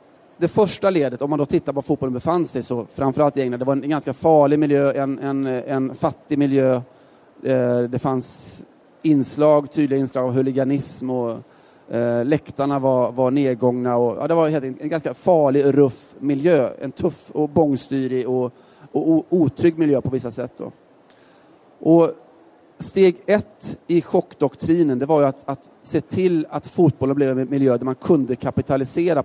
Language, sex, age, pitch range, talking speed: Swedish, male, 30-49, 130-150 Hz, 160 wpm